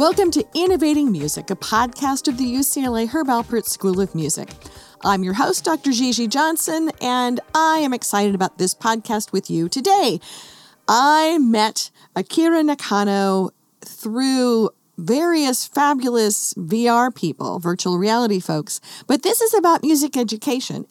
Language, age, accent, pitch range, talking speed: English, 40-59, American, 185-255 Hz, 140 wpm